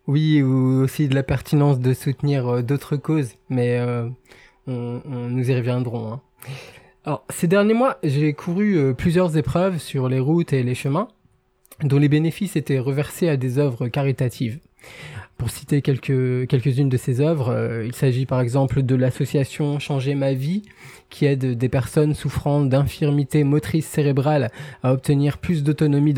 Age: 20-39